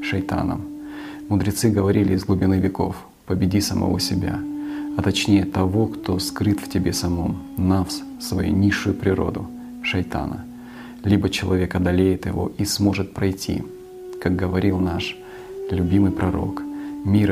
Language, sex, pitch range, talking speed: Russian, male, 95-125 Hz, 120 wpm